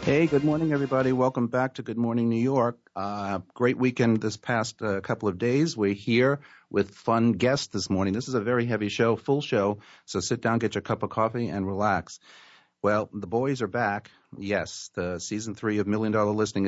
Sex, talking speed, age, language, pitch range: male, 210 wpm, 50-69, English, 105-135 Hz